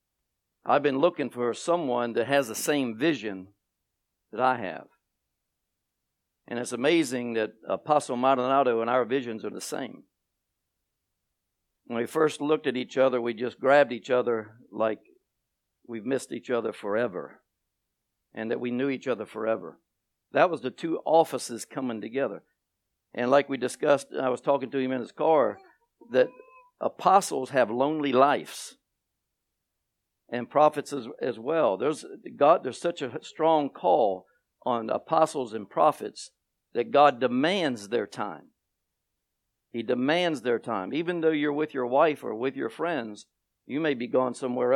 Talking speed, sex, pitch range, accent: 155 wpm, male, 115-145 Hz, American